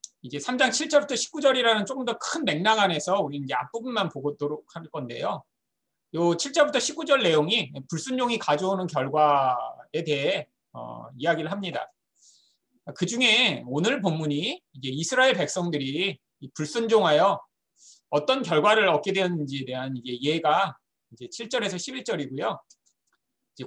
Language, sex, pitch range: Korean, male, 155-240 Hz